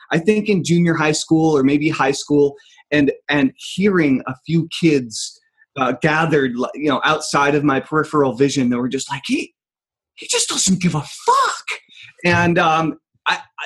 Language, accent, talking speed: English, American, 170 wpm